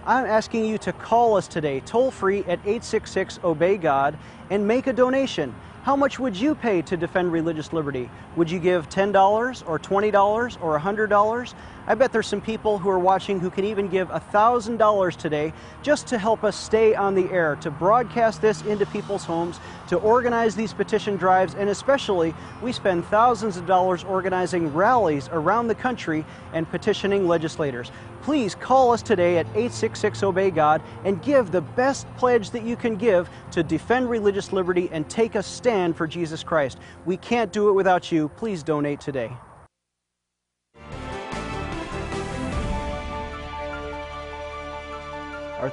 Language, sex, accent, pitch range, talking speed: English, male, American, 160-215 Hz, 150 wpm